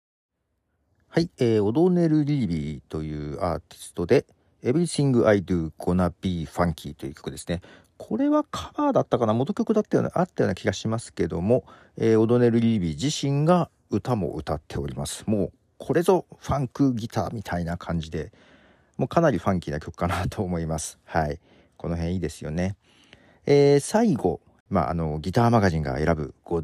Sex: male